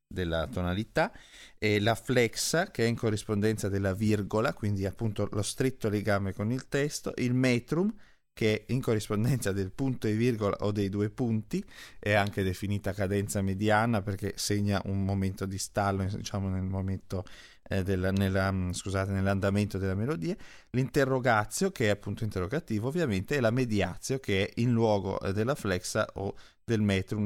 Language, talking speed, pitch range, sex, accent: Italian, 160 wpm, 100-125 Hz, male, native